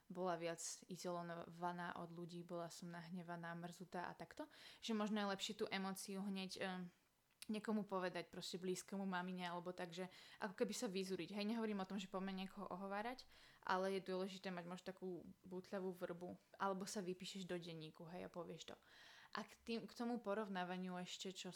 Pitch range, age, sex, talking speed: 180-205 Hz, 20-39, female, 180 wpm